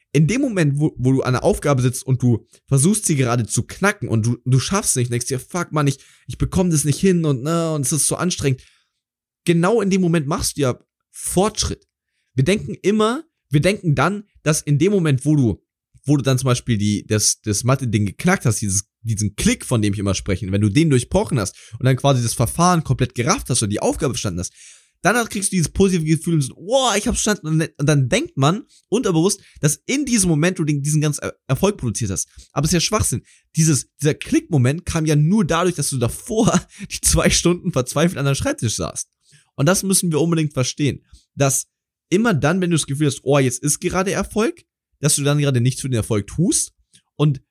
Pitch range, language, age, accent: 125-175 Hz, German, 20-39, German